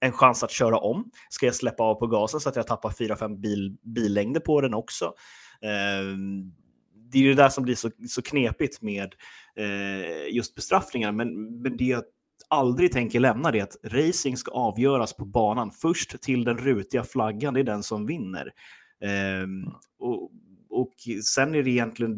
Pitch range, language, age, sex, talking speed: 105-130 Hz, Swedish, 30-49, male, 180 wpm